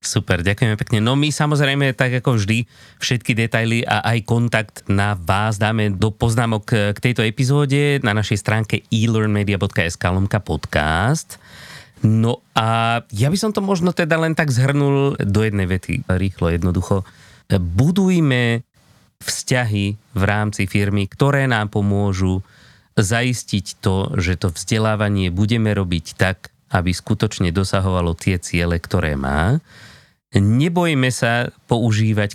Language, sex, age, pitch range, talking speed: Slovak, male, 30-49, 95-125 Hz, 130 wpm